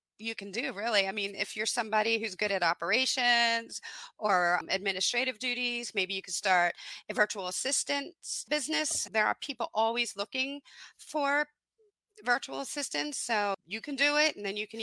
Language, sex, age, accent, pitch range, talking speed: English, female, 30-49, American, 190-245 Hz, 170 wpm